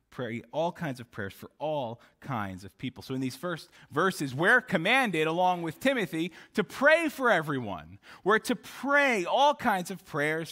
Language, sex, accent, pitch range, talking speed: English, male, American, 140-215 Hz, 175 wpm